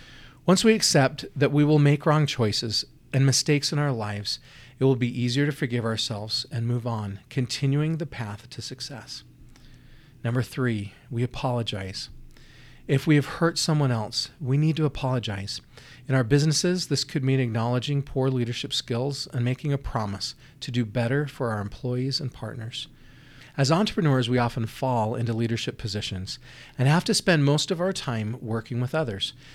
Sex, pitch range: male, 115-140 Hz